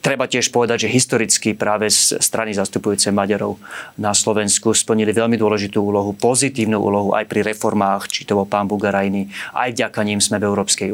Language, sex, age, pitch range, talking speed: Slovak, male, 30-49, 100-115 Hz, 170 wpm